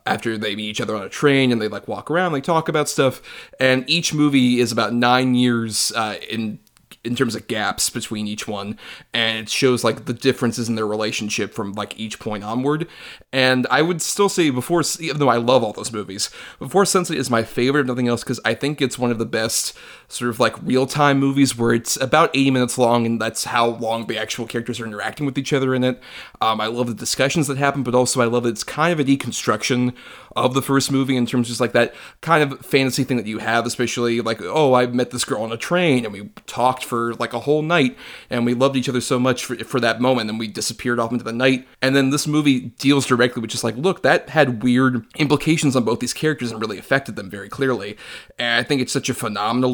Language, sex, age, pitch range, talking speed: English, male, 30-49, 115-135 Hz, 245 wpm